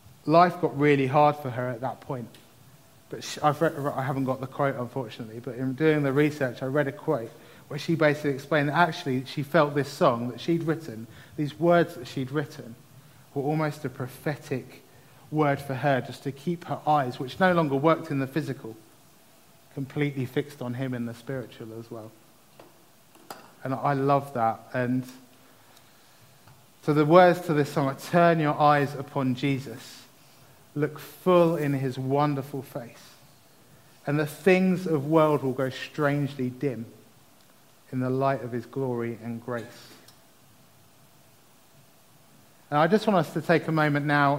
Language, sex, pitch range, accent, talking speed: English, male, 130-150 Hz, British, 165 wpm